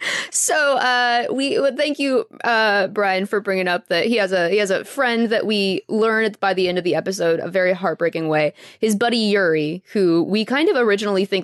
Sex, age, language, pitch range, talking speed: female, 20-39, English, 170-205 Hz, 215 wpm